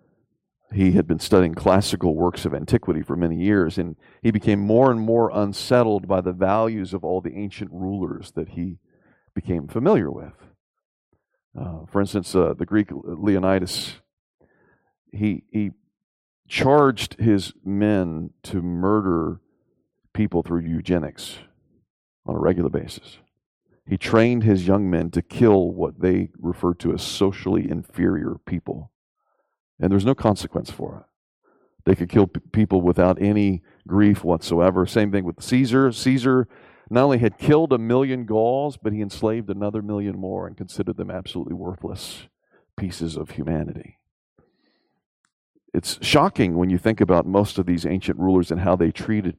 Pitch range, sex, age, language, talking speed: 90-110 Hz, male, 40-59, English, 150 wpm